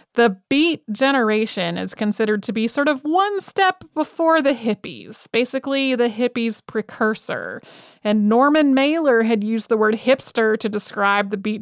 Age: 30-49